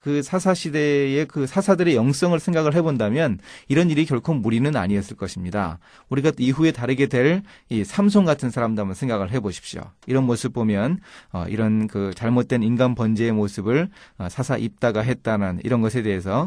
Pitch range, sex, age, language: 110-165 Hz, male, 30-49, Korean